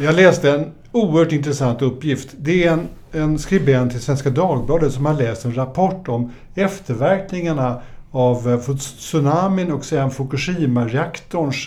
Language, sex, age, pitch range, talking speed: Swedish, male, 60-79, 125-165 Hz, 135 wpm